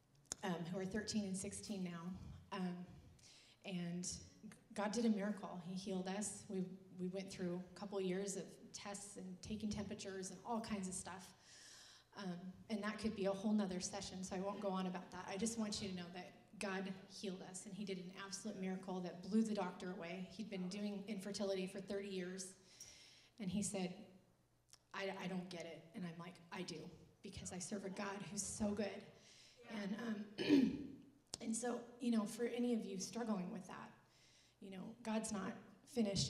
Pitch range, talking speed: 185-215 Hz, 190 wpm